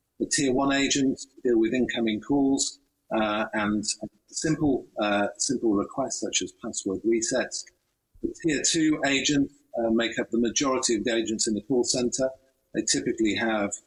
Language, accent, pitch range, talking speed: English, British, 105-140 Hz, 165 wpm